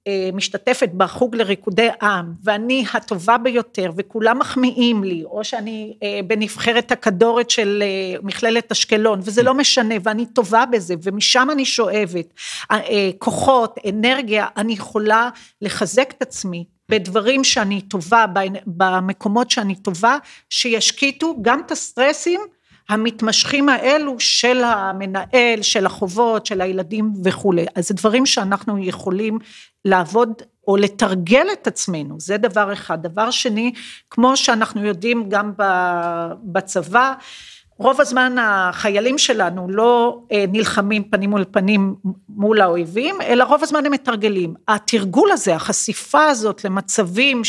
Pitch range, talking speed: 195-245 Hz, 120 wpm